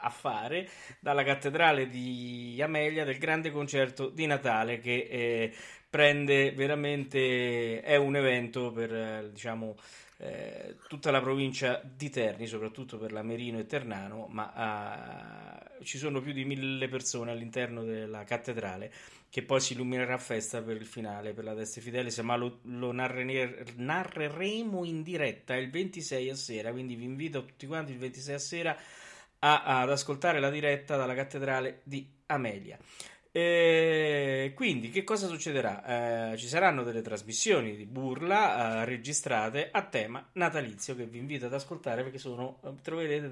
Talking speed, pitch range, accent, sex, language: 150 wpm, 120-150 Hz, native, male, Italian